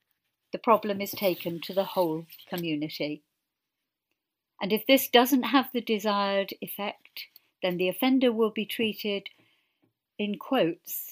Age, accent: 50-69, British